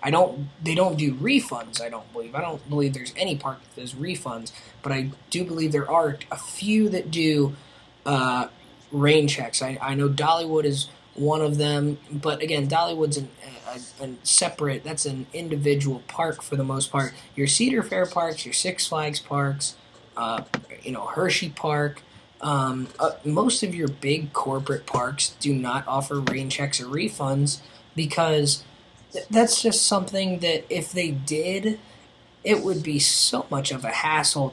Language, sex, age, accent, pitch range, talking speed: English, male, 20-39, American, 135-160 Hz, 170 wpm